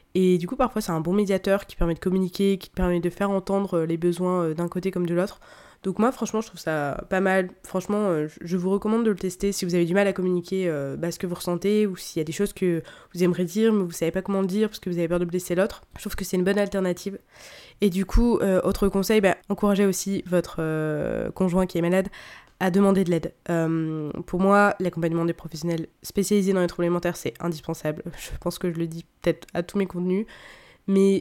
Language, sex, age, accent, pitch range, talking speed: French, female, 20-39, French, 175-195 Hz, 240 wpm